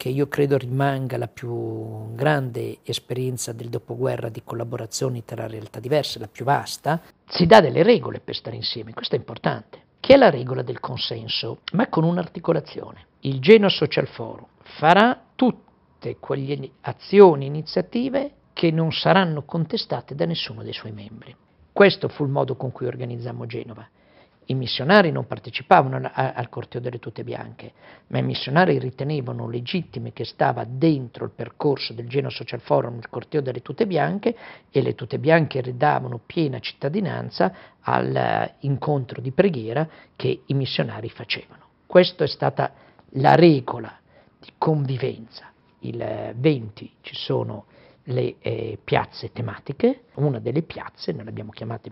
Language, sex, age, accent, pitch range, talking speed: Italian, male, 50-69, native, 115-155 Hz, 145 wpm